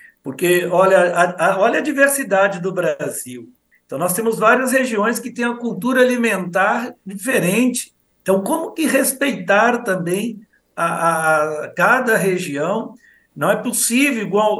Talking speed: 115 wpm